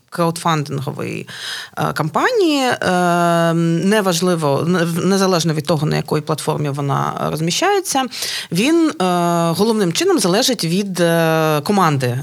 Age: 30-49